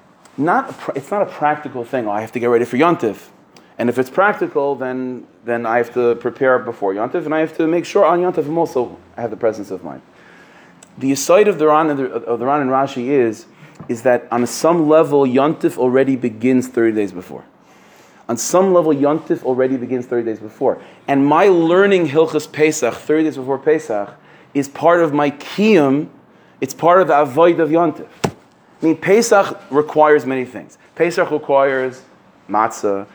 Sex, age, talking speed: male, 30-49, 195 wpm